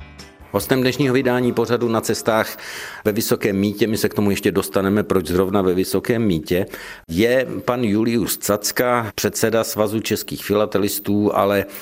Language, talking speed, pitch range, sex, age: Czech, 145 wpm, 95-120 Hz, male, 50-69